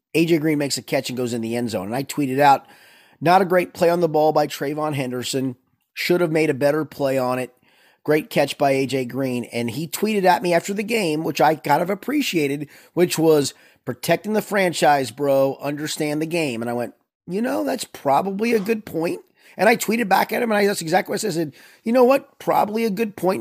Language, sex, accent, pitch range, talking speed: English, male, American, 140-195 Hz, 235 wpm